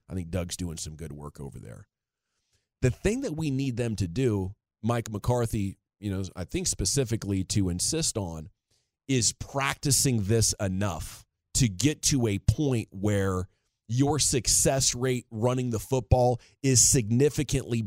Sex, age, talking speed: male, 30-49, 150 wpm